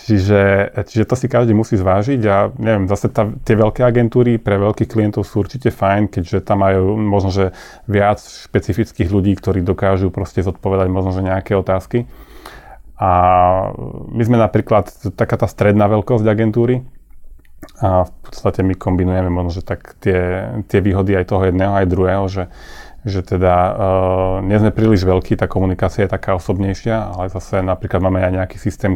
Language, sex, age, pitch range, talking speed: Slovak, male, 30-49, 90-100 Hz, 170 wpm